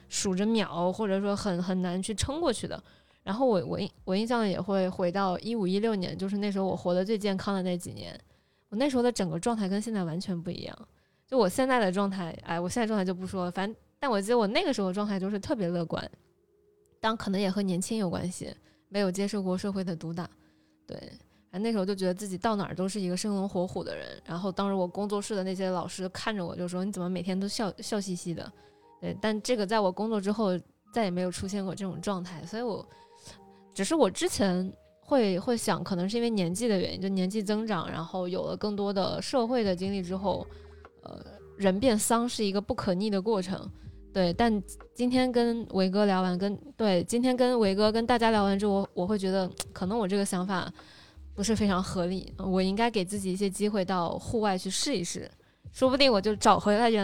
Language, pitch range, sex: Chinese, 185-215 Hz, female